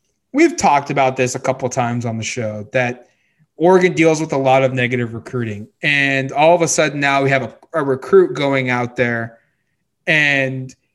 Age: 20-39